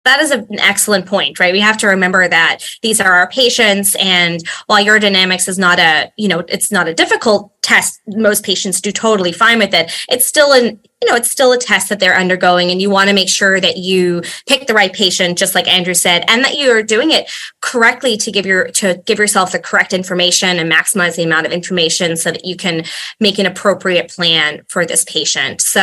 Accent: American